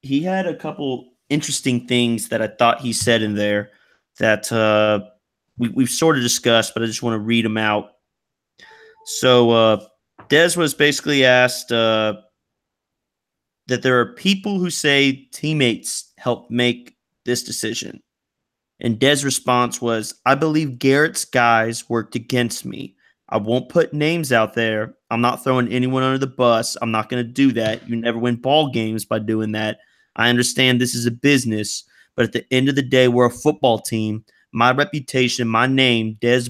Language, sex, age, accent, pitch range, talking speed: English, male, 30-49, American, 110-130 Hz, 175 wpm